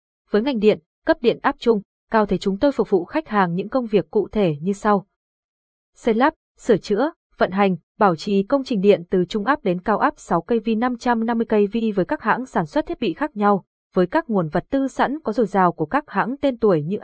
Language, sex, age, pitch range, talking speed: Vietnamese, female, 20-39, 190-245 Hz, 230 wpm